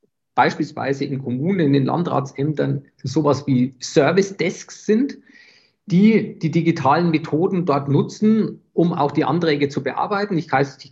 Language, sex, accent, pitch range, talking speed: German, male, German, 135-170 Hz, 135 wpm